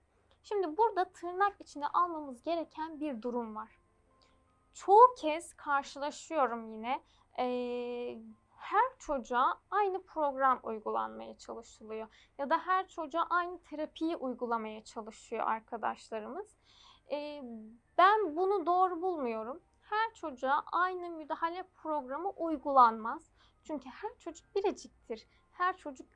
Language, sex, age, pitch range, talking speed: Turkish, female, 10-29, 245-325 Hz, 105 wpm